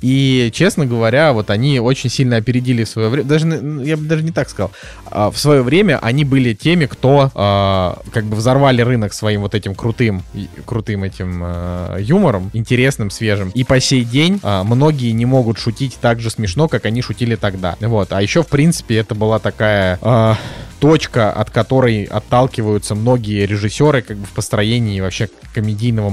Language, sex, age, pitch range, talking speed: Russian, male, 20-39, 105-130 Hz, 175 wpm